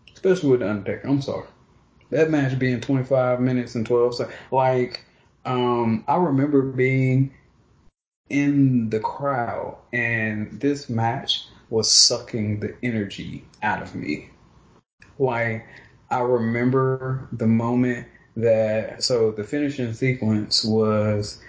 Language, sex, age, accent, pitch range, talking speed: English, male, 20-39, American, 110-135 Hz, 125 wpm